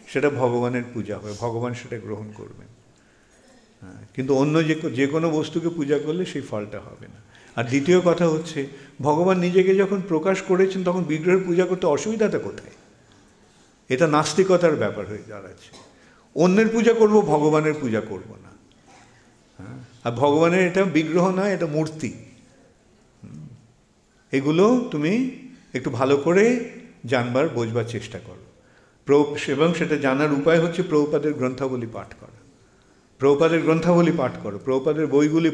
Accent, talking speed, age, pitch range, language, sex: Indian, 120 wpm, 50-69, 125-175 Hz, English, male